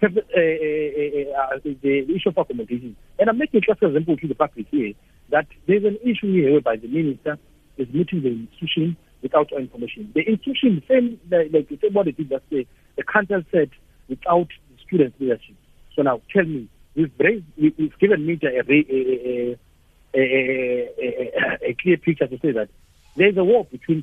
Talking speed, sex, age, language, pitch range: 170 wpm, male, 60-79, English, 130-175 Hz